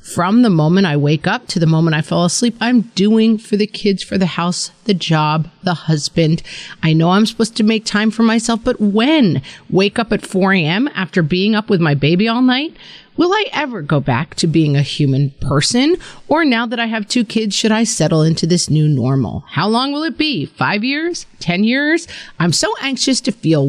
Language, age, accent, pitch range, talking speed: English, 40-59, American, 155-220 Hz, 220 wpm